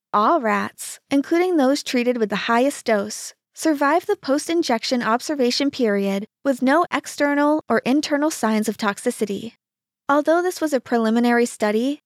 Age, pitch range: 20-39, 225-295 Hz